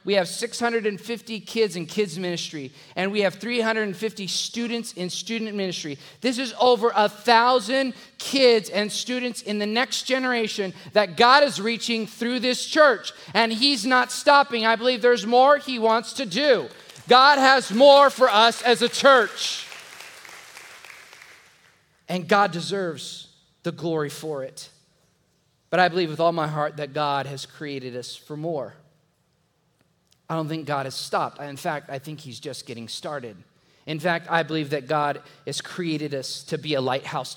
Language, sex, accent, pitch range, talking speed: English, male, American, 155-230 Hz, 160 wpm